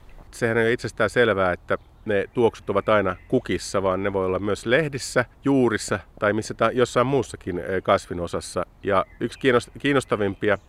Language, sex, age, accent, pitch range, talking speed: Finnish, male, 50-69, native, 90-105 Hz, 150 wpm